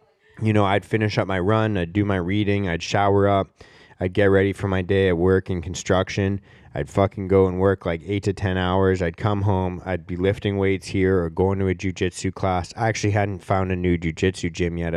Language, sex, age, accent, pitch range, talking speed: English, male, 20-39, American, 90-105 Hz, 230 wpm